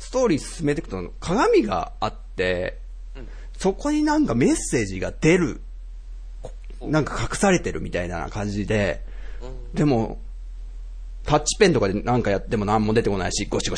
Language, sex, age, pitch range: Japanese, male, 40-59, 100-160 Hz